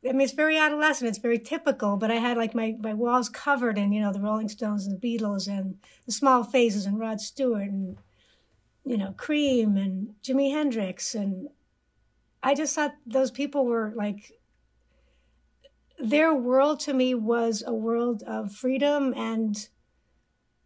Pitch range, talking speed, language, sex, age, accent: 220-275 Hz, 165 wpm, English, female, 60-79, American